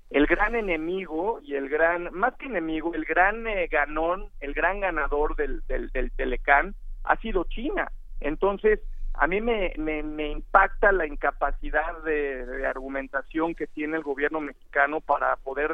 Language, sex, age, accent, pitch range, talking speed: Spanish, male, 50-69, Mexican, 145-185 Hz, 160 wpm